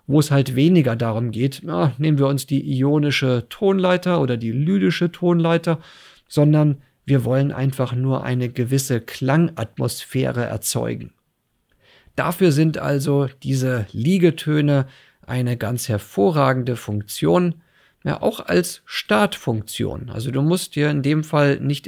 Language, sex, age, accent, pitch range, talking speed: English, male, 40-59, German, 125-155 Hz, 125 wpm